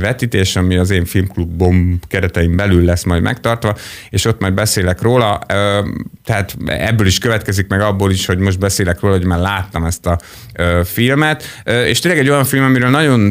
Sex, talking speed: male, 175 wpm